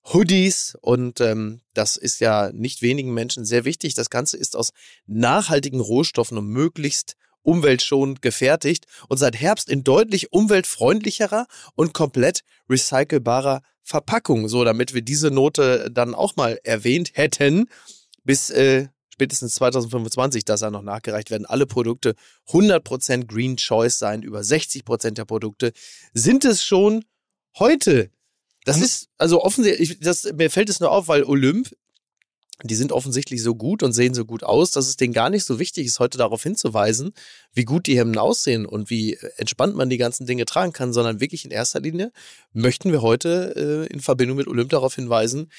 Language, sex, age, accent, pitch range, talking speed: German, male, 30-49, German, 115-155 Hz, 165 wpm